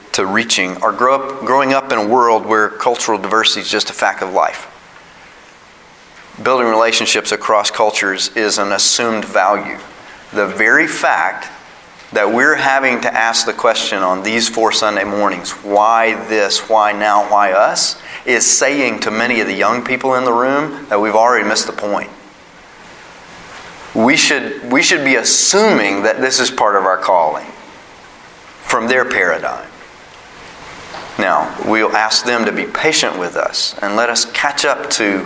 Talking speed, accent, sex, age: 160 wpm, American, male, 40-59